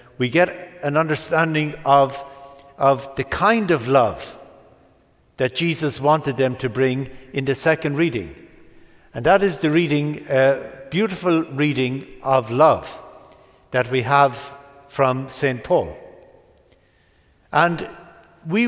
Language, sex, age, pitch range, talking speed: English, male, 60-79, 130-160 Hz, 125 wpm